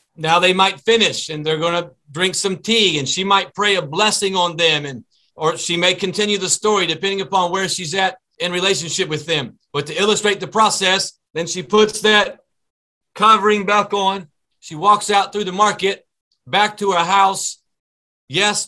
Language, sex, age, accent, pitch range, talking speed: English, male, 40-59, American, 160-195 Hz, 185 wpm